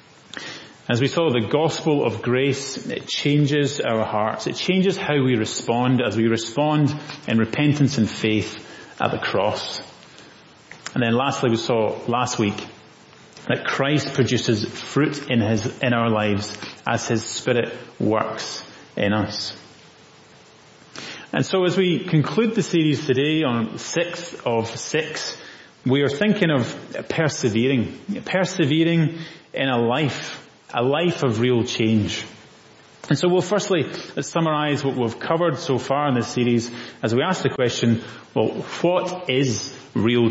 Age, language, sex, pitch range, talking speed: 30-49, English, male, 110-150 Hz, 145 wpm